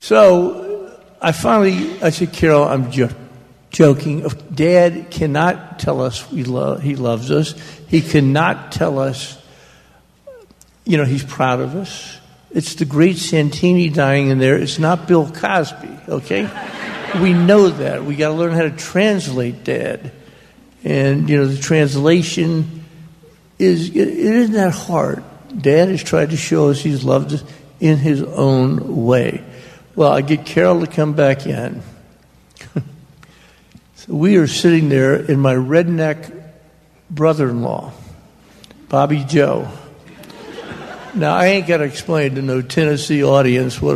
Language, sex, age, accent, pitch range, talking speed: English, male, 60-79, American, 140-170 Hz, 145 wpm